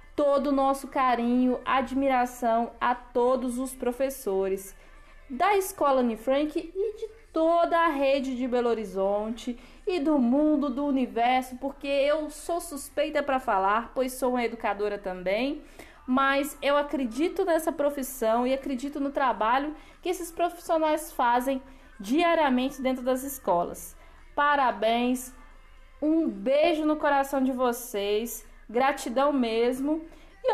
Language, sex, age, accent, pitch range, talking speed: Portuguese, female, 20-39, Brazilian, 240-290 Hz, 125 wpm